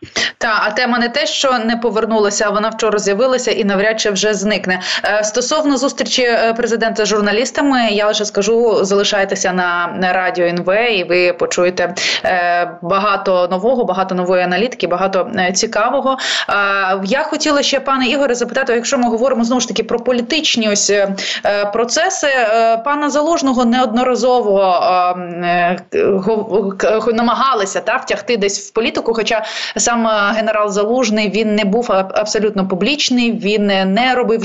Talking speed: 135 wpm